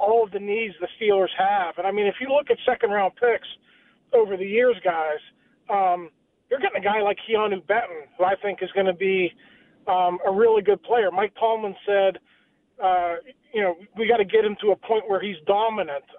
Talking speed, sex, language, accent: 210 wpm, male, English, American